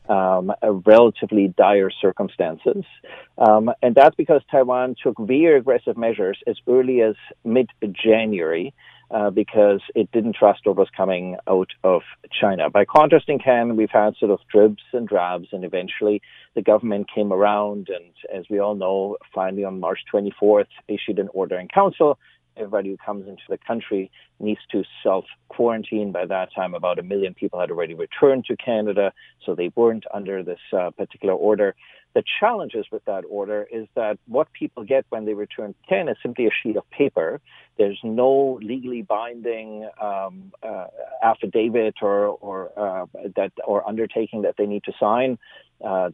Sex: male